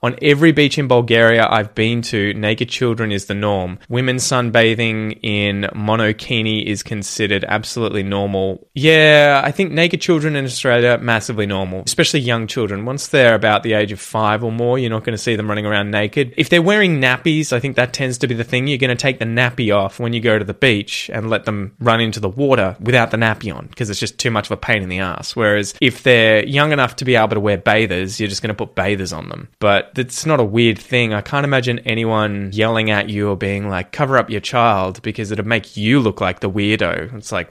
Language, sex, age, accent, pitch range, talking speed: English, male, 20-39, Australian, 110-140 Hz, 235 wpm